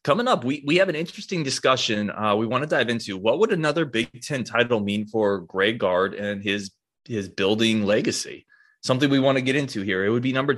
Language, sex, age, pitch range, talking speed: English, male, 20-39, 100-130 Hz, 225 wpm